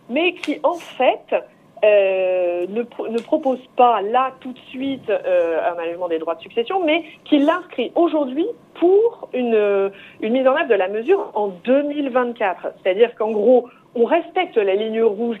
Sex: female